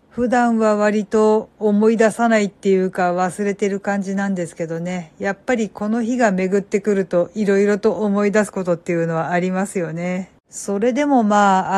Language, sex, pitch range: Japanese, female, 190-220 Hz